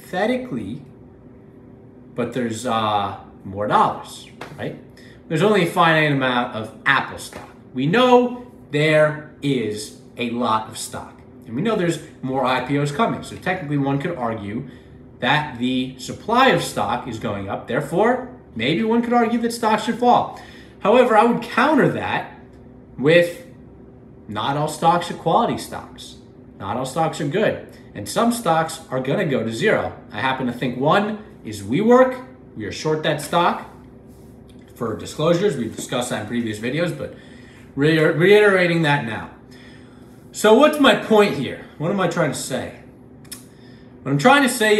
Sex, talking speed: male, 155 wpm